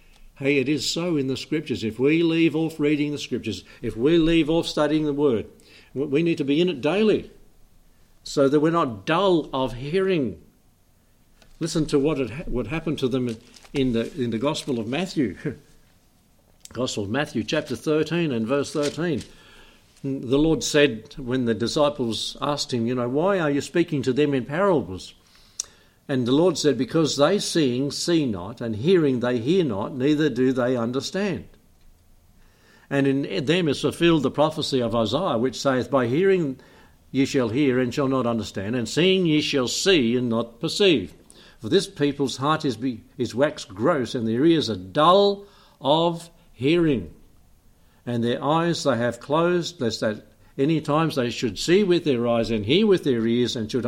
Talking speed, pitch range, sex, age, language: 175 wpm, 120-160 Hz, male, 60-79, English